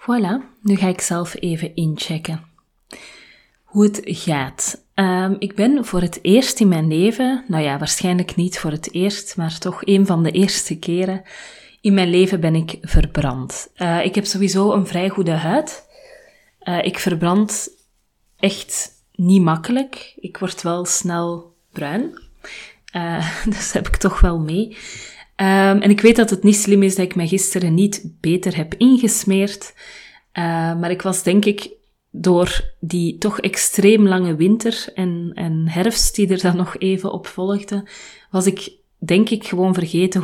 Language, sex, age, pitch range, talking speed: Dutch, female, 30-49, 175-205 Hz, 165 wpm